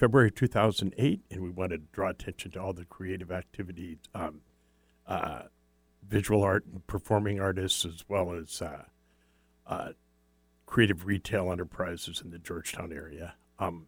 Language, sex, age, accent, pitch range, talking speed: English, male, 60-79, American, 85-110 Hz, 145 wpm